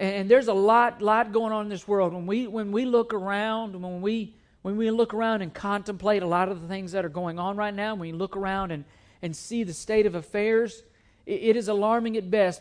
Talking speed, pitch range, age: 245 wpm, 175-225 Hz, 50-69